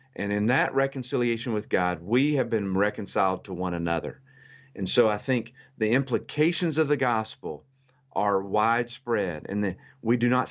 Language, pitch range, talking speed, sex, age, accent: English, 95-125 Hz, 165 wpm, male, 40-59, American